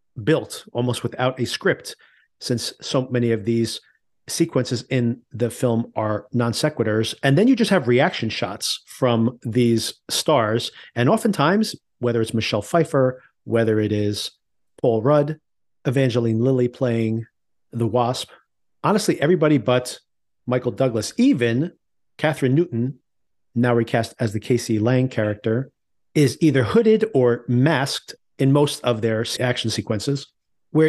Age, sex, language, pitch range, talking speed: 40-59, male, English, 115-140 Hz, 135 wpm